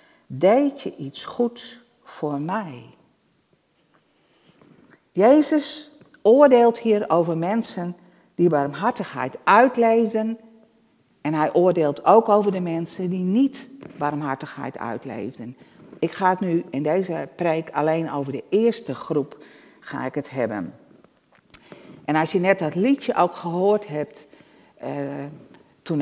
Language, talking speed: Dutch, 120 wpm